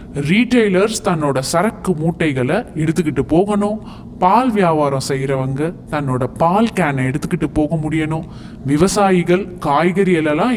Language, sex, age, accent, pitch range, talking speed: Tamil, male, 20-39, native, 145-205 Hz, 95 wpm